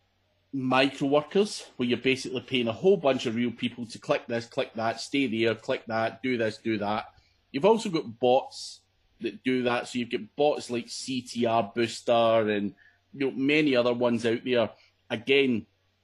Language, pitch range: English, 110-135 Hz